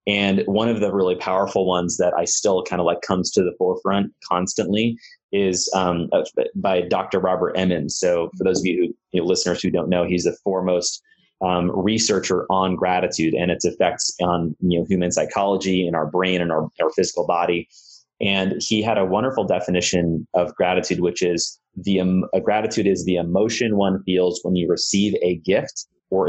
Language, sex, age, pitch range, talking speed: English, male, 30-49, 90-105 Hz, 195 wpm